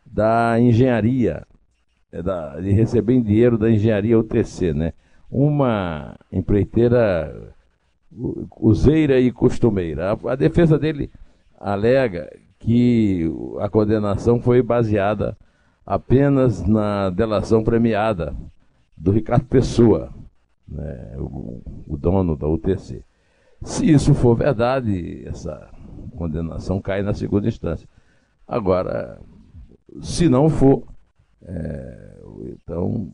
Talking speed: 90 wpm